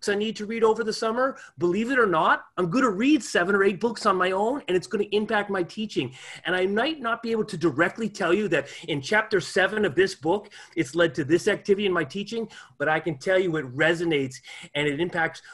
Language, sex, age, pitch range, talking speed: English, male, 30-49, 155-205 Hz, 245 wpm